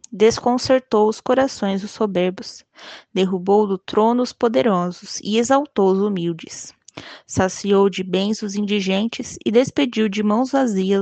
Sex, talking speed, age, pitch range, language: female, 130 wpm, 20-39, 185-215 Hz, Portuguese